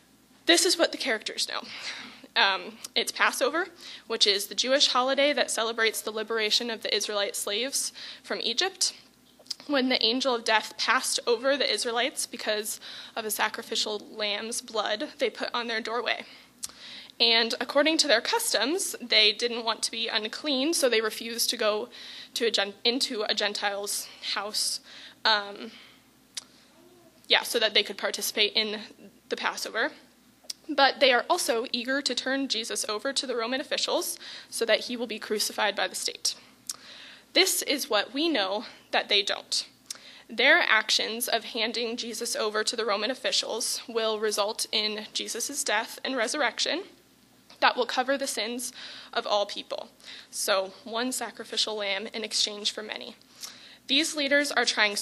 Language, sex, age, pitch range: English, female, 20-39, 220-275 Hz